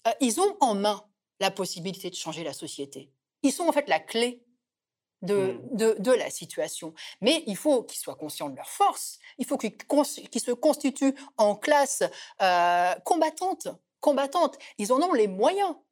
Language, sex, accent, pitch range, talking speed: French, female, French, 190-295 Hz, 170 wpm